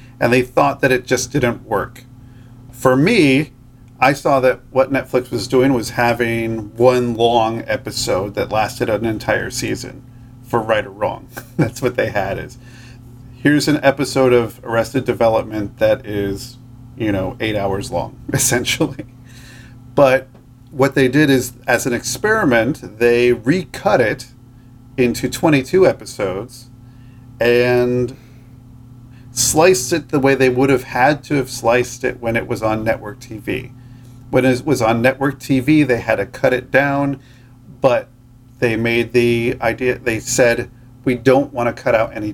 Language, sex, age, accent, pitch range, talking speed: English, male, 40-59, American, 120-130 Hz, 155 wpm